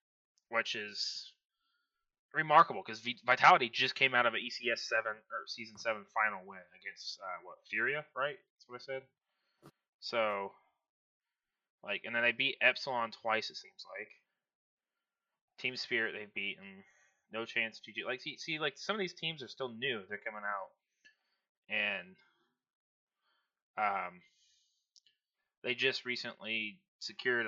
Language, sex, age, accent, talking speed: English, male, 20-39, American, 140 wpm